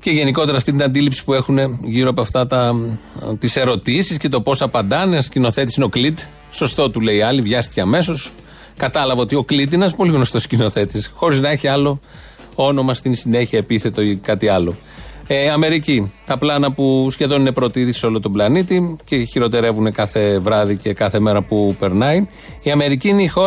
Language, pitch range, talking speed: Greek, 120-170 Hz, 195 wpm